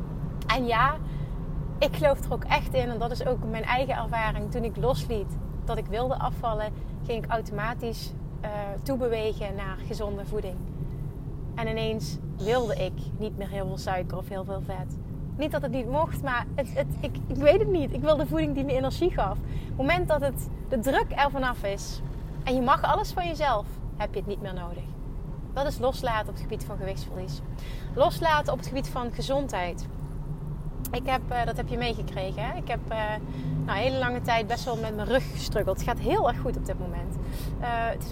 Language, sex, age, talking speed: Dutch, female, 30-49, 205 wpm